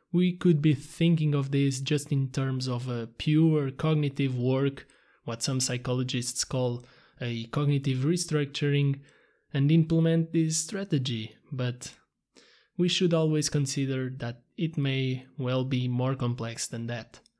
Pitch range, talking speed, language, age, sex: 130-150 Hz, 135 wpm, English, 20-39, male